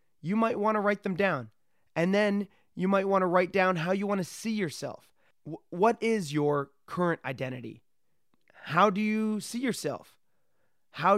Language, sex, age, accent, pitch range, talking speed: English, male, 30-49, American, 150-200 Hz, 170 wpm